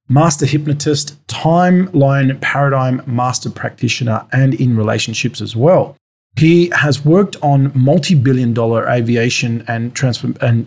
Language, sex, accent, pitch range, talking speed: English, male, Australian, 120-150 Hz, 110 wpm